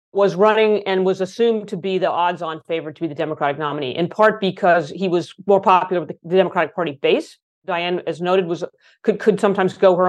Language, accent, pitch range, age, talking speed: English, American, 170-205 Hz, 40-59, 215 wpm